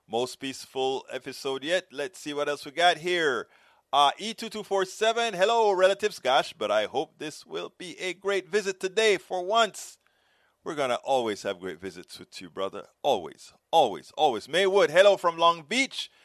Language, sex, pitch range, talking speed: English, male, 140-195 Hz, 170 wpm